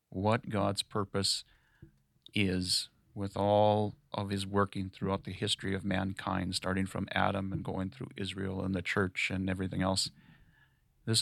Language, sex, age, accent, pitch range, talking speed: English, male, 40-59, American, 95-115 Hz, 150 wpm